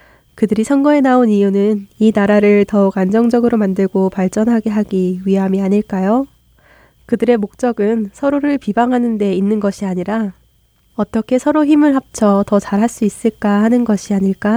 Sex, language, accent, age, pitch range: female, Korean, native, 20-39, 195-230 Hz